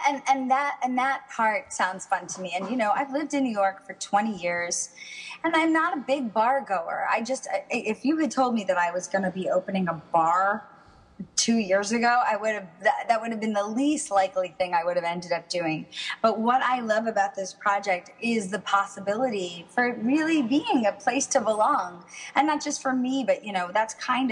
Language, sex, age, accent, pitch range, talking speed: English, female, 20-39, American, 190-265 Hz, 230 wpm